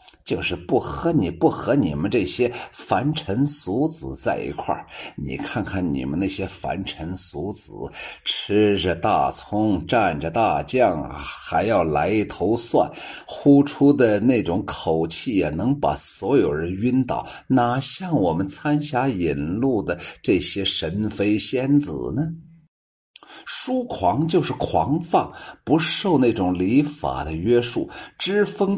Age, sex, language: 50-69, male, Chinese